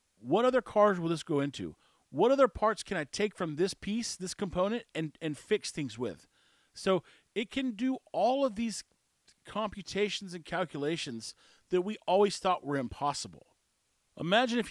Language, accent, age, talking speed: English, American, 40-59, 165 wpm